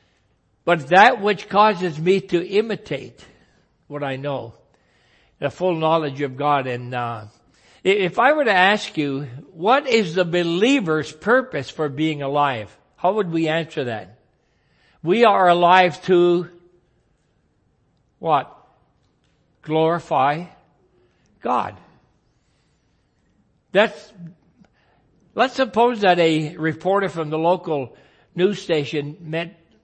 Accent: American